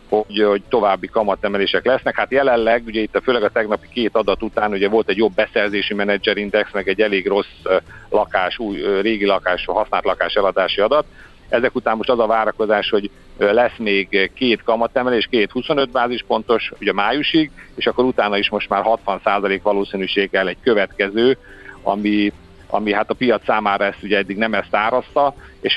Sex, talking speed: male, 170 wpm